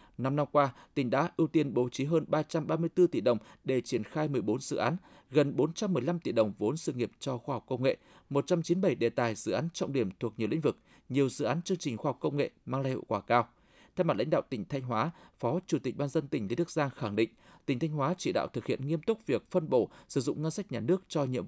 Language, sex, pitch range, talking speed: Vietnamese, male, 130-170 Hz, 265 wpm